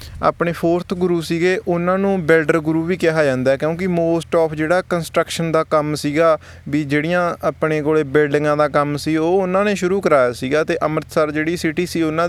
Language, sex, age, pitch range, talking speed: Punjabi, male, 20-39, 150-180 Hz, 190 wpm